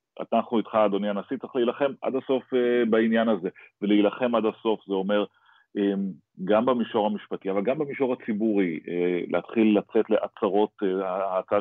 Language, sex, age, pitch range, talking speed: Hebrew, male, 30-49, 100-120 Hz, 135 wpm